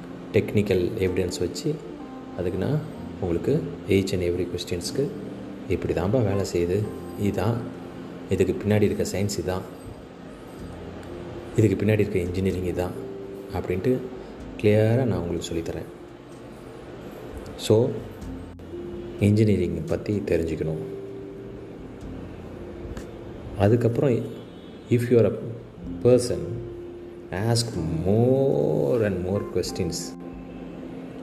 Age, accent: 30-49, native